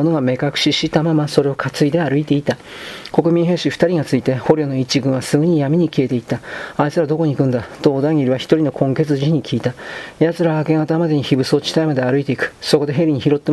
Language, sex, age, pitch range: Japanese, male, 40-59, 135-160 Hz